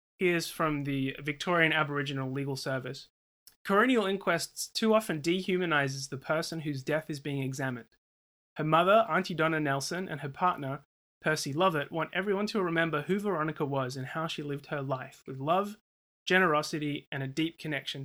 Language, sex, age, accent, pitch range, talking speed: English, male, 20-39, Australian, 135-170 Hz, 165 wpm